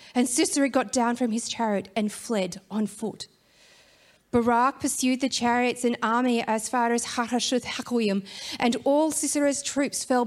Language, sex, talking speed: English, female, 145 wpm